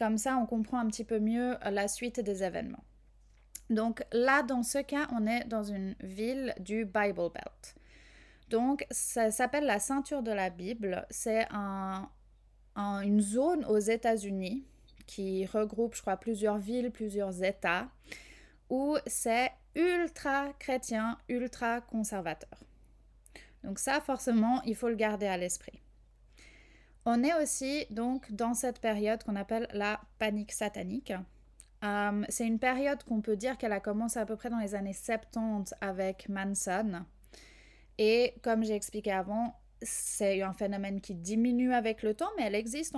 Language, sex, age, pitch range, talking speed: English, female, 20-39, 205-250 Hz, 150 wpm